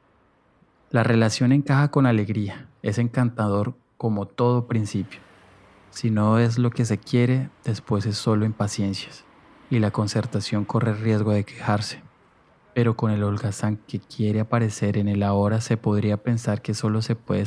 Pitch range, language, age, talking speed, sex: 100-115 Hz, Spanish, 20-39, 155 wpm, male